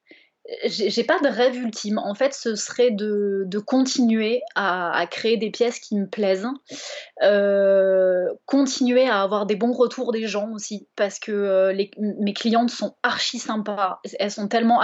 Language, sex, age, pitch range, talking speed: French, female, 20-39, 200-240 Hz, 170 wpm